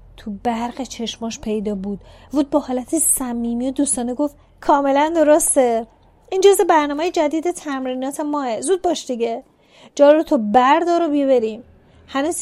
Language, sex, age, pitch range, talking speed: Persian, female, 30-49, 225-275 Hz, 135 wpm